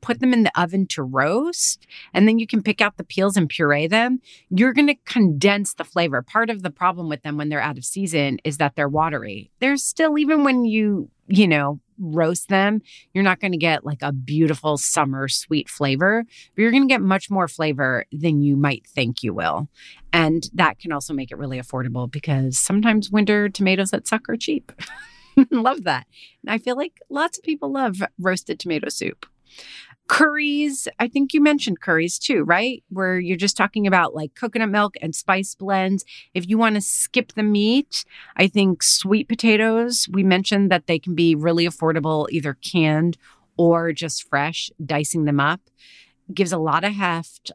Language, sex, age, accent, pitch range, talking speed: English, female, 30-49, American, 155-220 Hz, 190 wpm